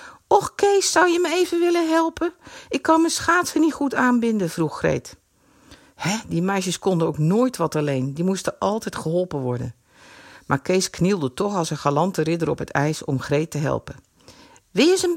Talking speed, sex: 195 wpm, female